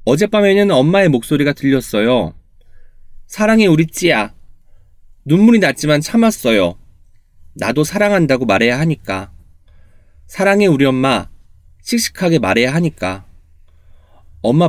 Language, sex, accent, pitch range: Korean, male, native, 90-145 Hz